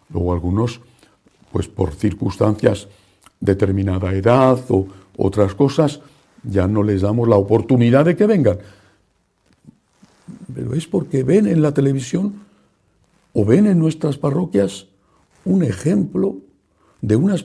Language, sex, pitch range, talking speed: English, male, 100-150 Hz, 120 wpm